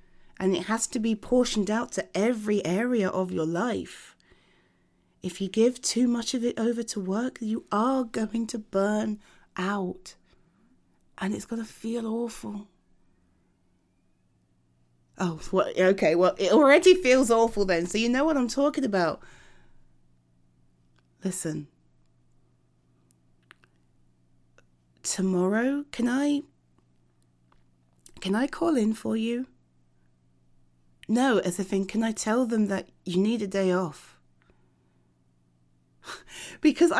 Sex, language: female, English